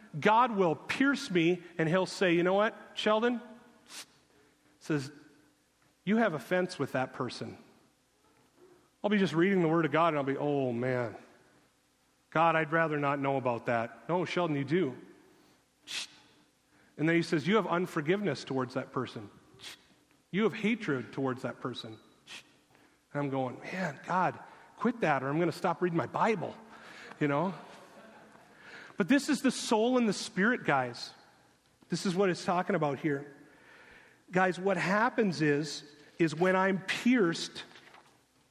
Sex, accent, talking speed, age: male, American, 155 wpm, 40-59